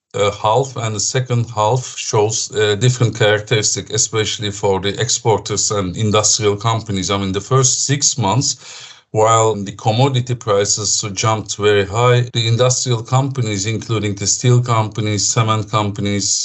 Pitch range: 105-125 Hz